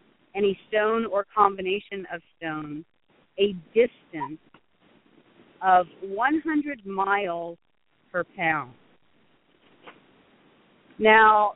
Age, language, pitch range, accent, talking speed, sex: 40-59, English, 180-240 Hz, American, 75 wpm, female